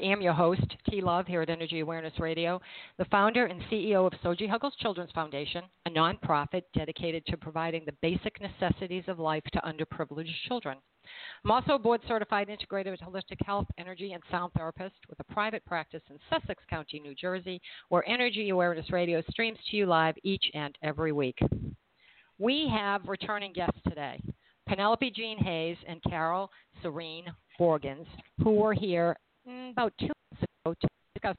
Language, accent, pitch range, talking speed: English, American, 165-210 Hz, 165 wpm